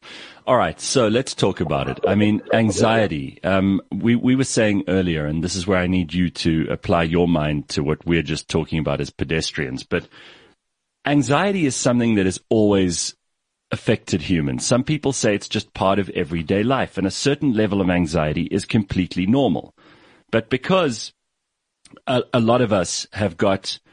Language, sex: English, male